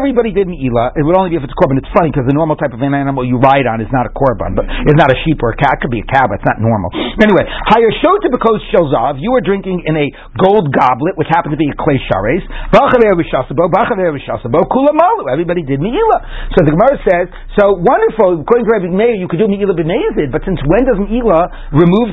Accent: American